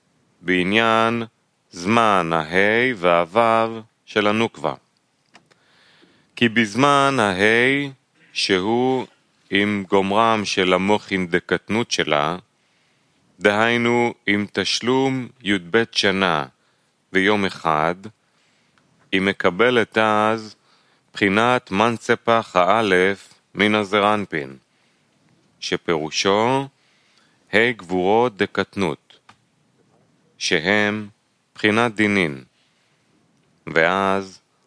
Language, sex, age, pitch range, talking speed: Hebrew, male, 30-49, 95-115 Hz, 70 wpm